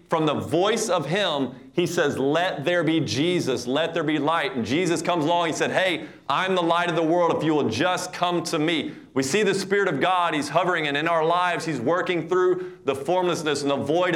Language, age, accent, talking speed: English, 30-49, American, 235 wpm